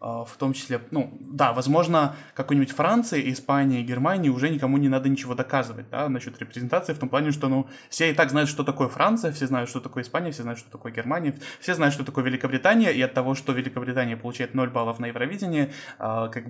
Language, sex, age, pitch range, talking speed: Russian, male, 20-39, 120-140 Hz, 205 wpm